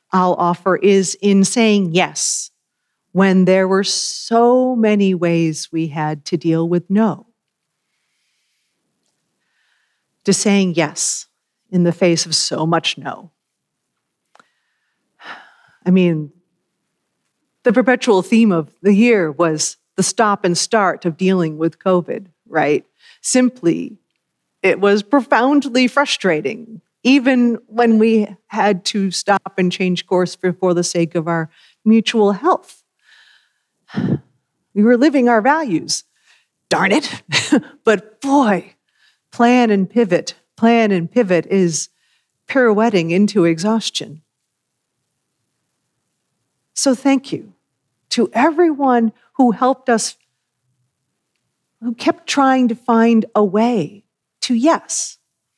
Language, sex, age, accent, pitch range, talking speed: English, female, 40-59, American, 175-235 Hz, 110 wpm